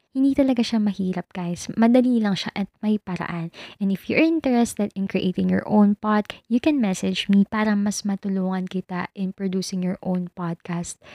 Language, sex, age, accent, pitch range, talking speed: Filipino, female, 20-39, native, 185-215 Hz, 180 wpm